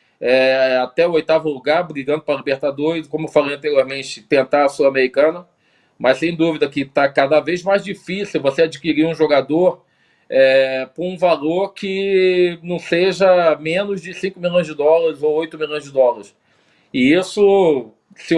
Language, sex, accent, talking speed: Portuguese, male, Brazilian, 165 wpm